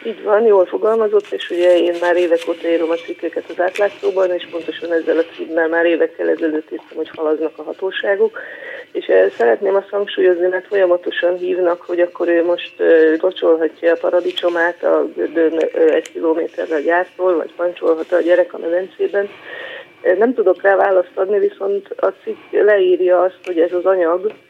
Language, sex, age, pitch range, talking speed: Hungarian, female, 30-49, 165-195 Hz, 160 wpm